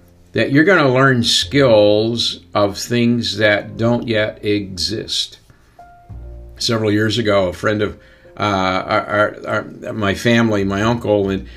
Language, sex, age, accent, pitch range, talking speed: English, male, 50-69, American, 95-120 Hz, 120 wpm